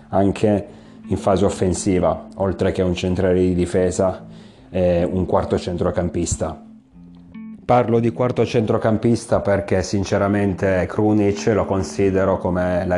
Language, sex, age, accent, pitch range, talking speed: Italian, male, 30-49, native, 90-105 Hz, 115 wpm